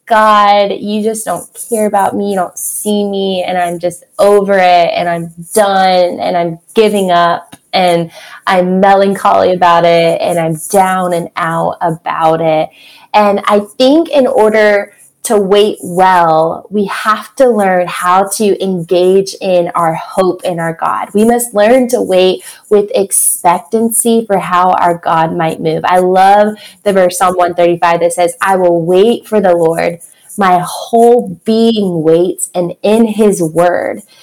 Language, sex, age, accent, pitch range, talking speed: English, female, 20-39, American, 175-215 Hz, 160 wpm